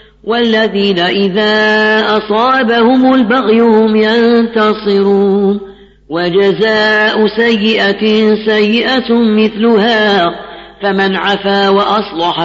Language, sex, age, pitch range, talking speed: Arabic, female, 40-59, 200-230 Hz, 65 wpm